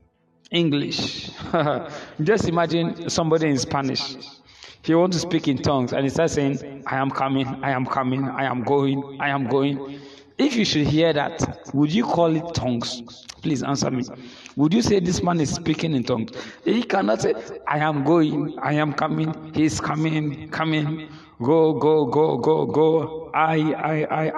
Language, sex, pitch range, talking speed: English, male, 135-160 Hz, 175 wpm